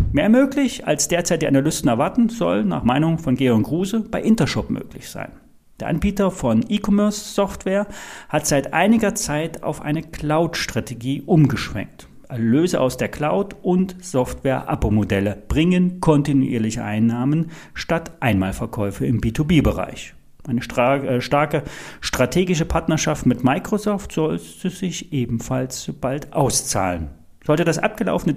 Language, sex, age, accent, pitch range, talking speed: German, male, 40-59, German, 130-185 Hz, 125 wpm